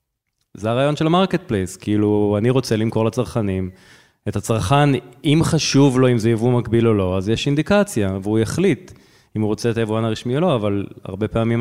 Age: 20-39